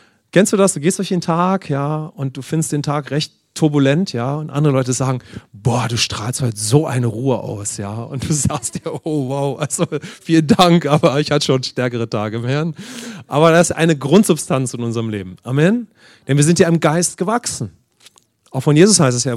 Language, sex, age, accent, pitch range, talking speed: English, male, 30-49, German, 120-160 Hz, 215 wpm